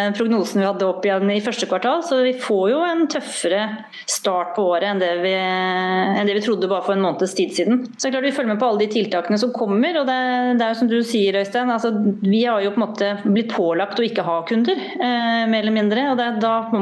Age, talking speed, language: 30-49, 255 wpm, English